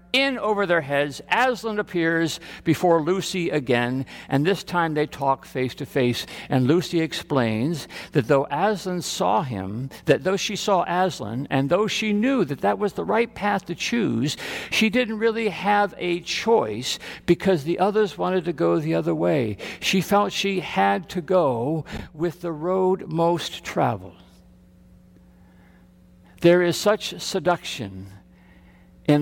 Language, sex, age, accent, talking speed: English, male, 60-79, American, 150 wpm